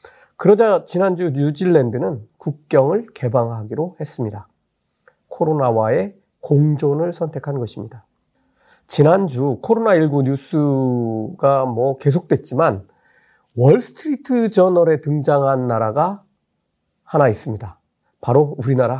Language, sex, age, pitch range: Korean, male, 40-59, 130-200 Hz